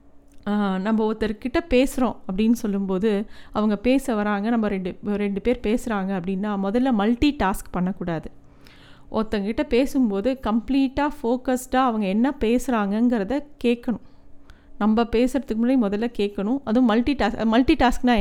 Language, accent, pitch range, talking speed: Tamil, native, 205-250 Hz, 120 wpm